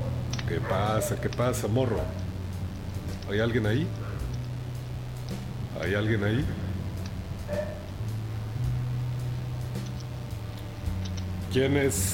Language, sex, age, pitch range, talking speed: Spanish, male, 40-59, 100-125 Hz, 60 wpm